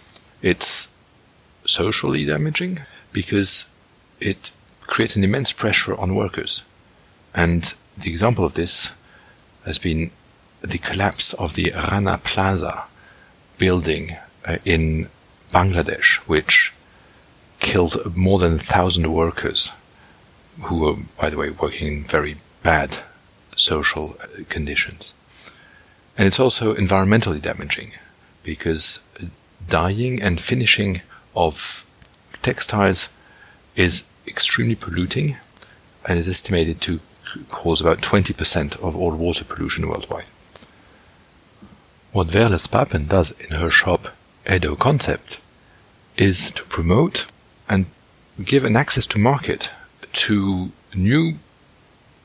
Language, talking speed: English, 105 wpm